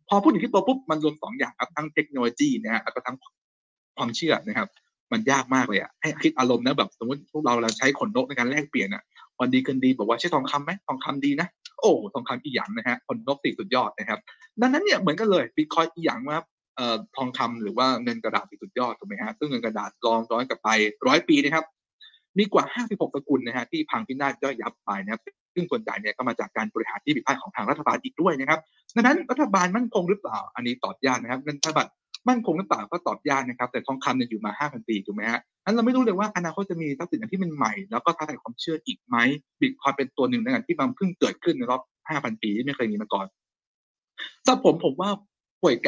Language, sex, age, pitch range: Thai, male, 20-39, 125-205 Hz